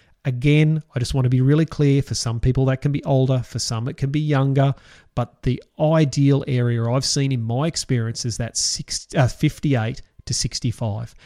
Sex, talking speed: male, 185 wpm